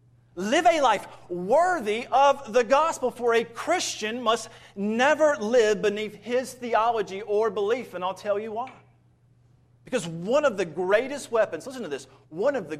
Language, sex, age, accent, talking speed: English, male, 30-49, American, 165 wpm